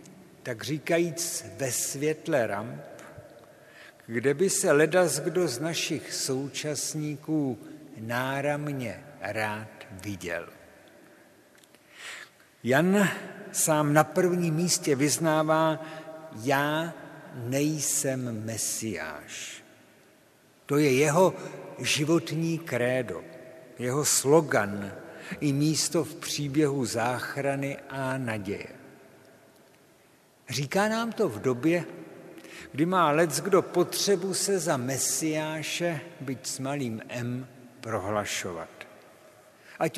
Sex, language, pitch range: male, Czech, 130-165 Hz